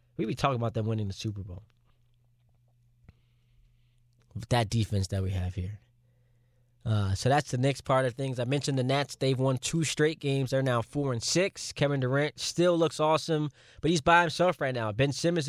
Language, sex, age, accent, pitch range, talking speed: English, male, 20-39, American, 120-145 Hz, 200 wpm